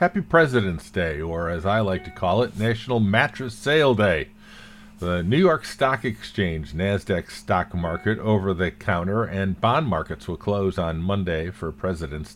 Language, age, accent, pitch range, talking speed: English, 50-69, American, 85-115 Hz, 155 wpm